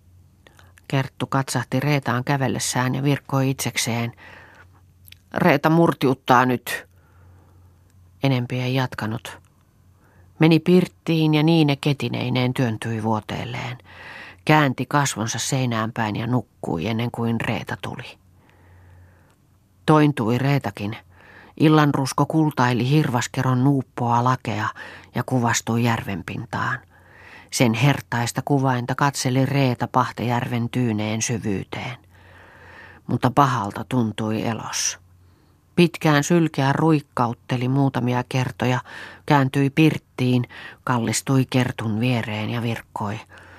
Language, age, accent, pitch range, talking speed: Finnish, 40-59, native, 105-140 Hz, 90 wpm